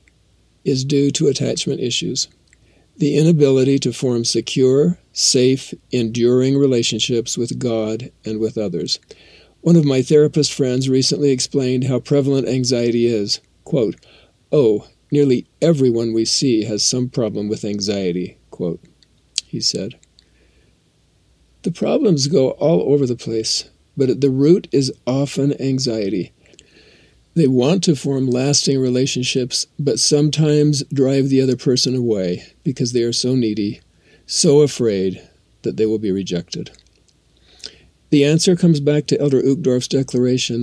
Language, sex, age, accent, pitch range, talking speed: English, male, 50-69, American, 115-140 Hz, 135 wpm